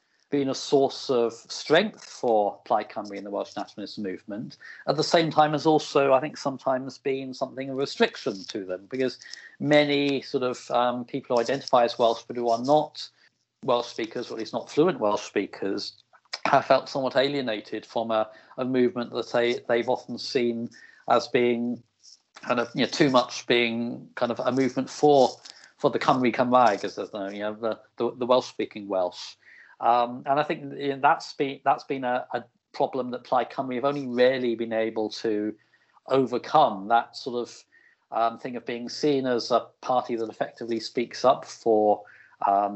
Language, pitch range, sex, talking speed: English, 115-135 Hz, male, 185 wpm